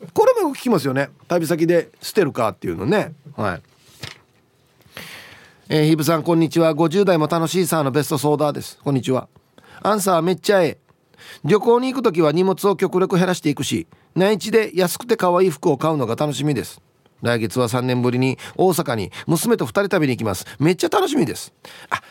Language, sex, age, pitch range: Japanese, male, 30-49, 140-195 Hz